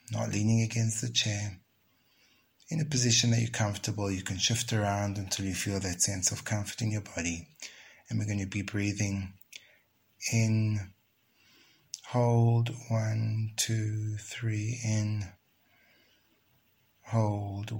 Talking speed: 125 wpm